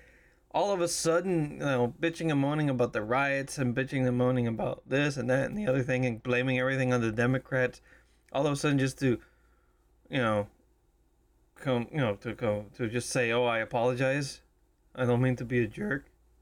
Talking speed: 205 wpm